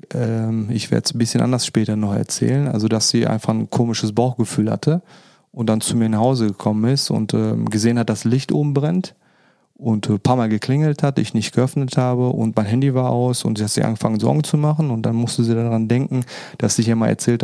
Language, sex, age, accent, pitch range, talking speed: German, male, 30-49, German, 115-140 Hz, 225 wpm